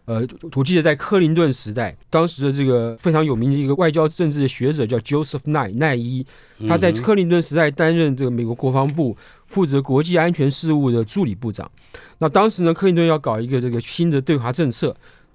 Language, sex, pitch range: Chinese, male, 120-170 Hz